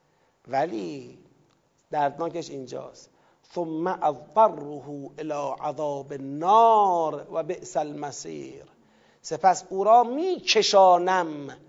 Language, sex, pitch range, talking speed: Persian, male, 165-230 Hz, 75 wpm